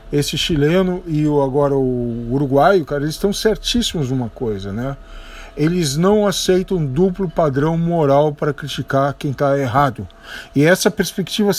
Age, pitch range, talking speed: 50-69, 130-170 Hz, 145 wpm